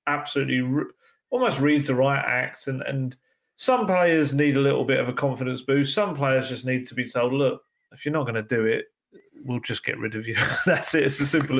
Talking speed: 230 wpm